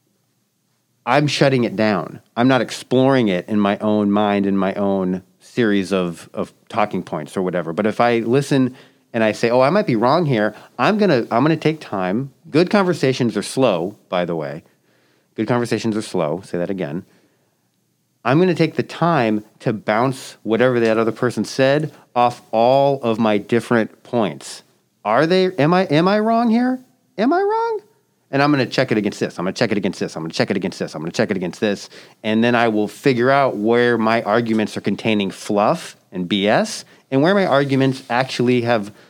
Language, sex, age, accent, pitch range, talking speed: English, male, 40-59, American, 110-140 Hz, 205 wpm